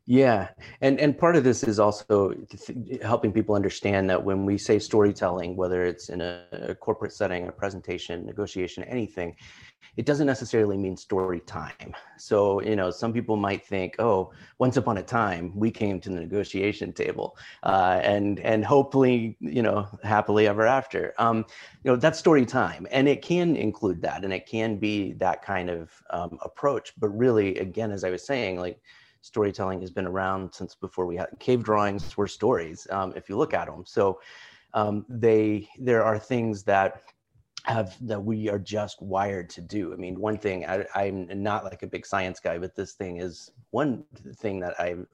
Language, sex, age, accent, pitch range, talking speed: English, male, 30-49, American, 95-115 Hz, 180 wpm